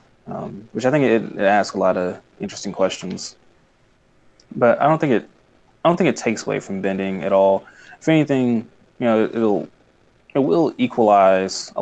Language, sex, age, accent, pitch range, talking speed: English, male, 20-39, American, 95-115 Hz, 185 wpm